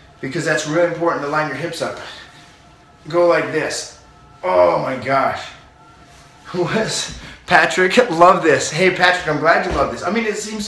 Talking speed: 175 wpm